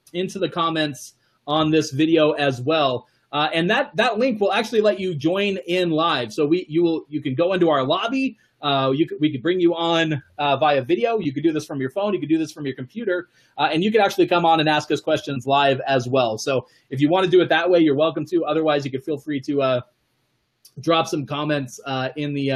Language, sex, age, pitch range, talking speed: English, male, 30-49, 130-170 Hz, 250 wpm